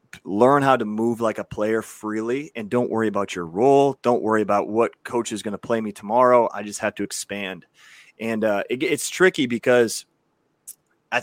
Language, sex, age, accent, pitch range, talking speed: English, male, 30-49, American, 105-120 Hz, 190 wpm